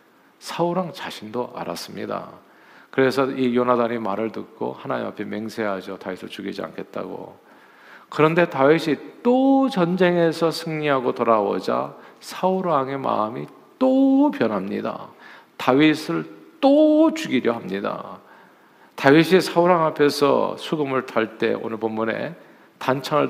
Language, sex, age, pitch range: Korean, male, 50-69, 125-190 Hz